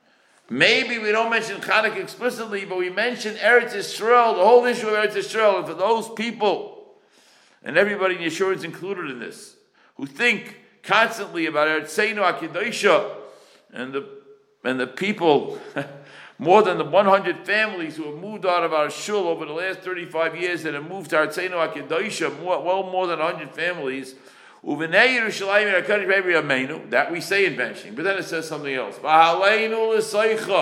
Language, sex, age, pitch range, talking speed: English, male, 60-79, 170-225 Hz, 155 wpm